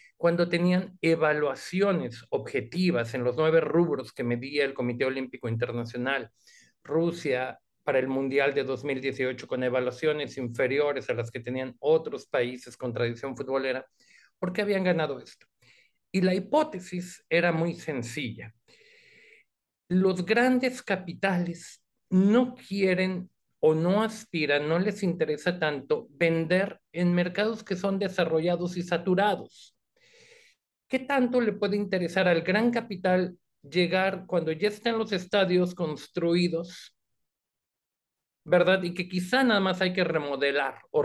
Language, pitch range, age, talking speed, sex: Spanish, 150-195 Hz, 50-69, 130 wpm, male